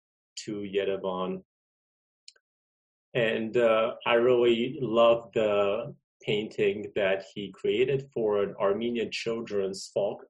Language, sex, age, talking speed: English, male, 30-49, 100 wpm